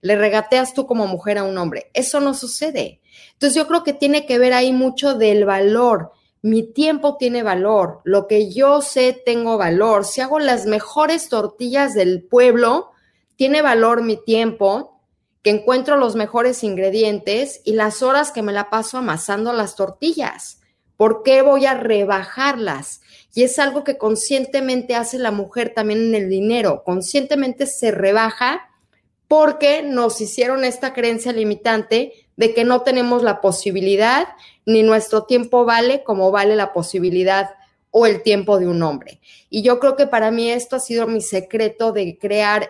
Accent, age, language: Mexican, 30-49, Spanish